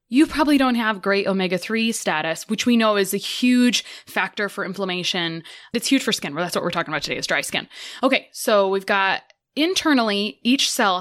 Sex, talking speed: female, 195 wpm